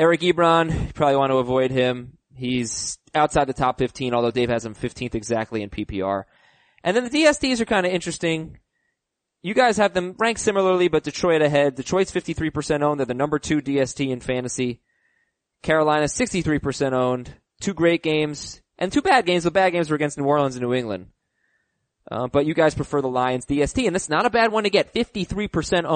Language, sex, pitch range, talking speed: English, male, 135-205 Hz, 195 wpm